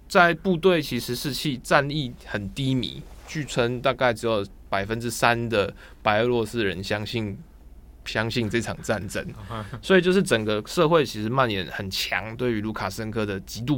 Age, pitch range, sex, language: 20-39, 105-135 Hz, male, Chinese